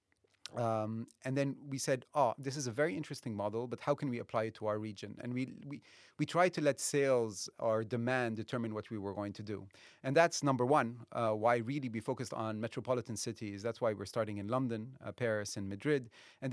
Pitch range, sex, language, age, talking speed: 105-130 Hz, male, English, 30-49, 220 wpm